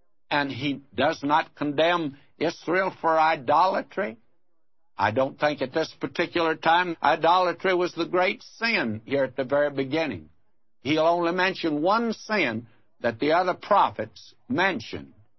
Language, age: English, 60-79